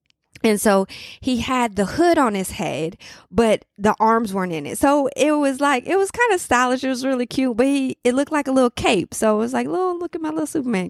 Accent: American